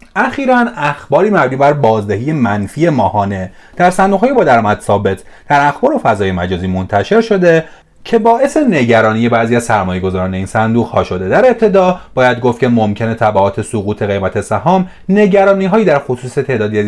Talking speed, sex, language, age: 160 wpm, male, Persian, 30-49